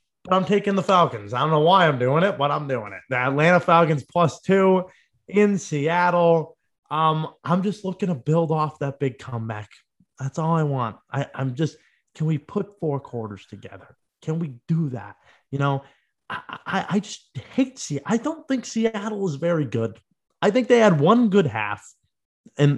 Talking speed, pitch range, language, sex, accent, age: 190 wpm, 120-195 Hz, English, male, American, 20-39